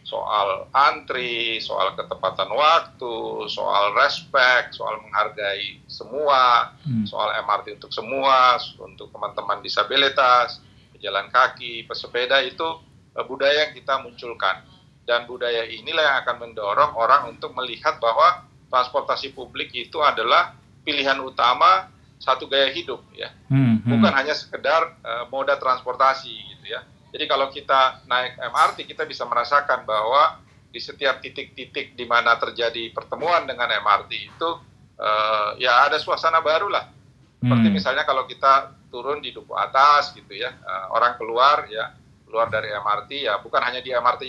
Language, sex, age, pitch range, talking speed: Indonesian, male, 40-59, 115-135 Hz, 135 wpm